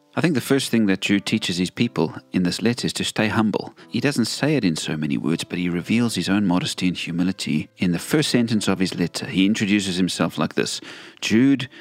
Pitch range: 90-110 Hz